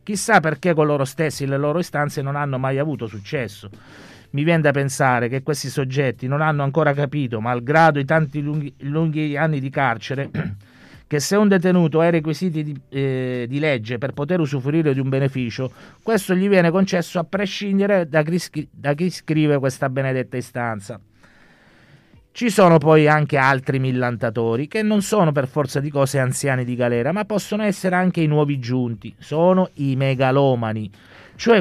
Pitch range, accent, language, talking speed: 135-185 Hz, native, Italian, 170 wpm